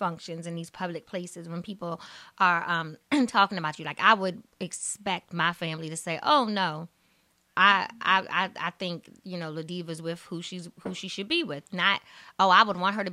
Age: 20-39